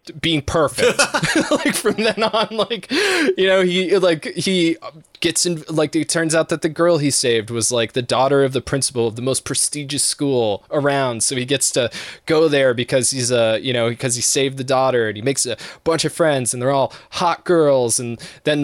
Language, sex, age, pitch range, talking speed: English, male, 20-39, 130-170 Hz, 215 wpm